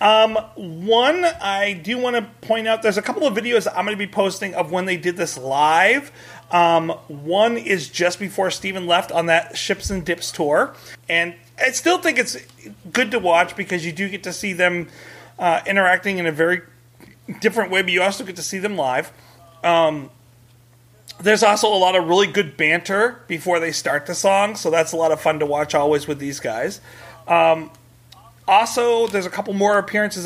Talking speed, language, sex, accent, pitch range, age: 200 wpm, English, male, American, 155-195 Hz, 30-49